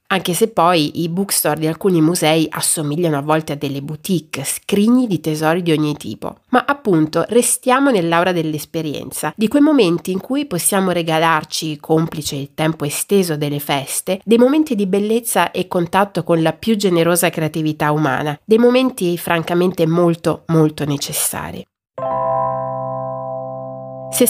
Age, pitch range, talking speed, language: 30-49, 155-210 Hz, 140 wpm, Italian